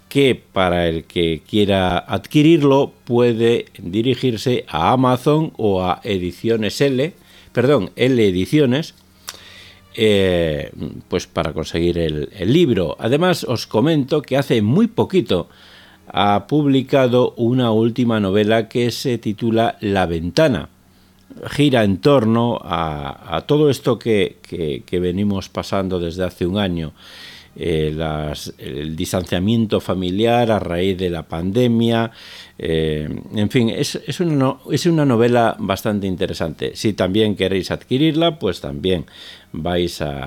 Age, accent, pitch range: 50-69, Spanish, 90-125 Hz